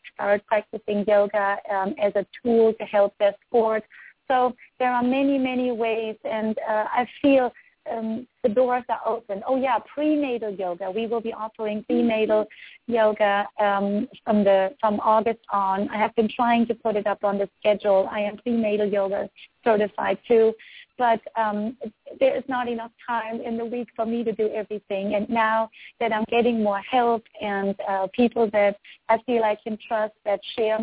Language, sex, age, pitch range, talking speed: English, female, 30-49, 205-230 Hz, 180 wpm